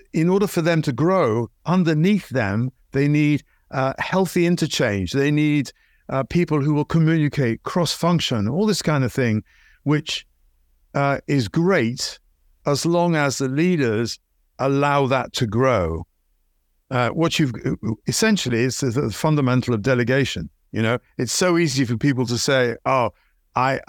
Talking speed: 155 wpm